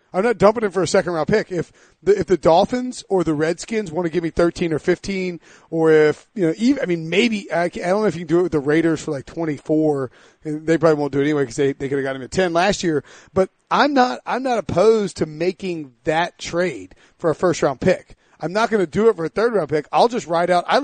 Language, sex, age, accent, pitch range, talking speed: English, male, 30-49, American, 160-205 Hz, 280 wpm